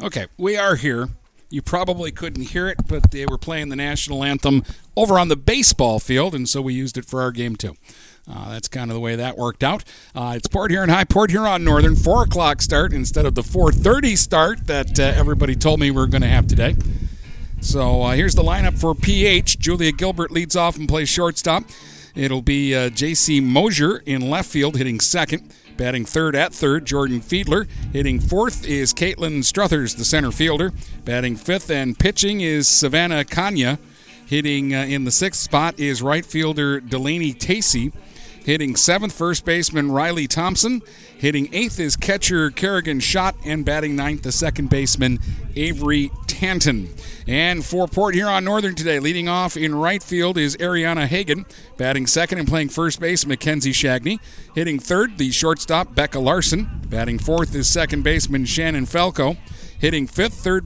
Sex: male